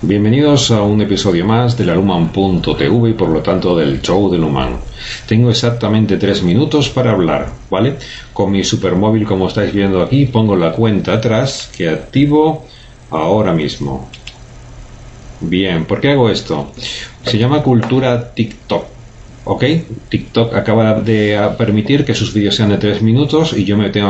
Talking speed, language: 155 wpm, Spanish